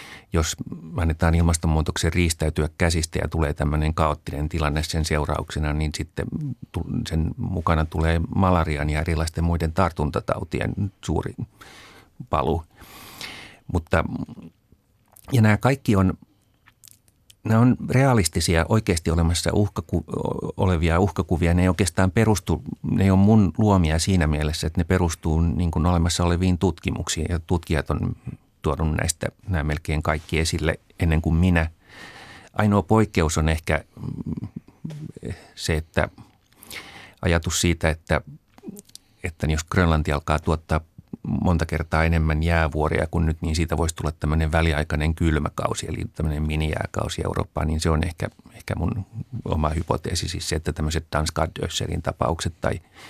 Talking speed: 125 wpm